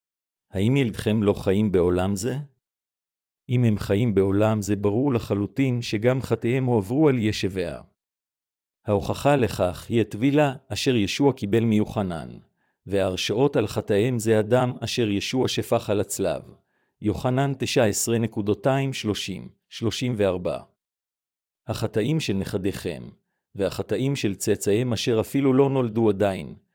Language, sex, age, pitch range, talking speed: Hebrew, male, 50-69, 105-125 Hz, 110 wpm